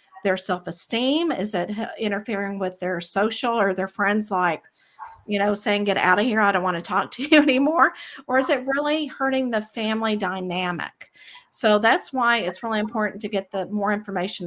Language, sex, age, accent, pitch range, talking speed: English, female, 50-69, American, 200-250 Hz, 190 wpm